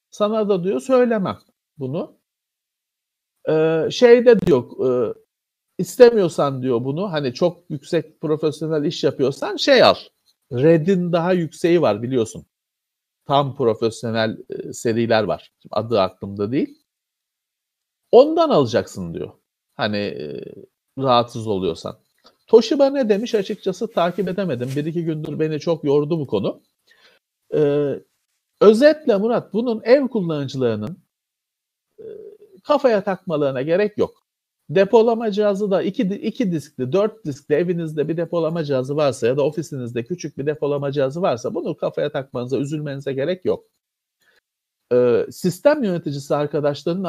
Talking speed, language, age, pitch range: 115 wpm, Turkish, 50-69, 145-215 Hz